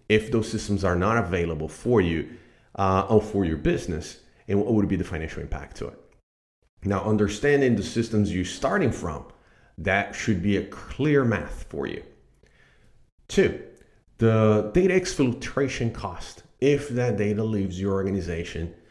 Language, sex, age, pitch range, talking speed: English, male, 40-59, 90-115 Hz, 150 wpm